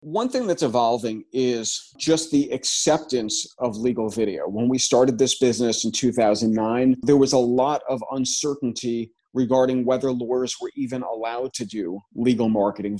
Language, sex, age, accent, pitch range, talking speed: English, male, 30-49, American, 120-145 Hz, 155 wpm